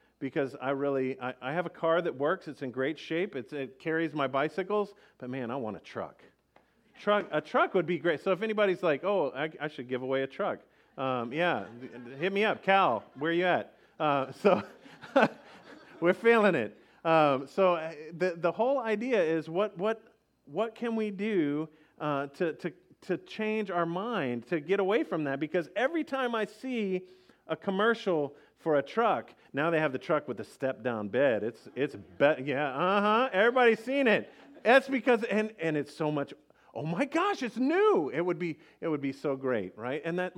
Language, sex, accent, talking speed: English, male, American, 200 wpm